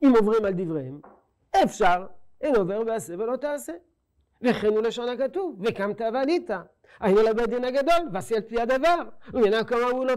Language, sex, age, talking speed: English, male, 50-69, 175 wpm